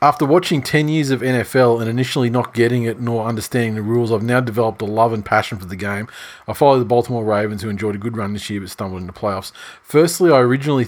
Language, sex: English, male